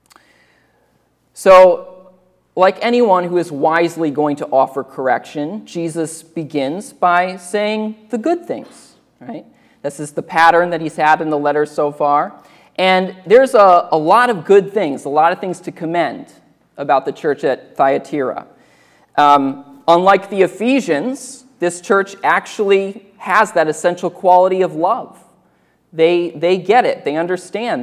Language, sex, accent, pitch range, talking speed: English, male, American, 165-230 Hz, 145 wpm